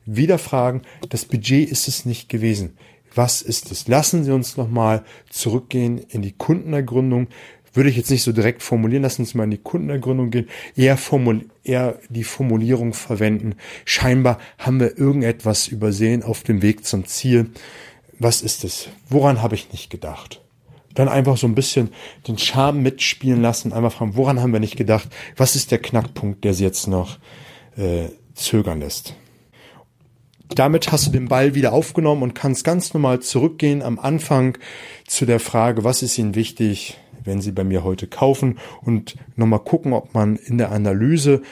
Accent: German